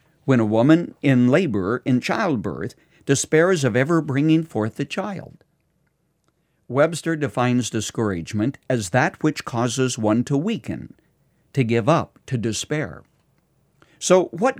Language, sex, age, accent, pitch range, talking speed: English, male, 50-69, American, 115-155 Hz, 125 wpm